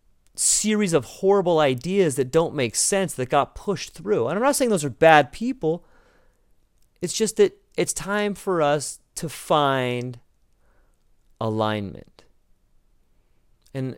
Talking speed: 135 wpm